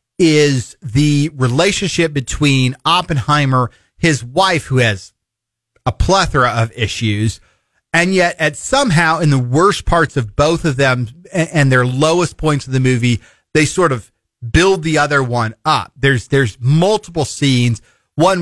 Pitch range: 125-160 Hz